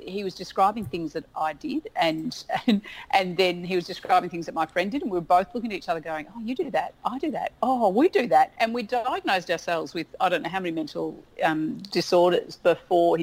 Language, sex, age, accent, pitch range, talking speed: English, female, 40-59, Australian, 160-220 Hz, 240 wpm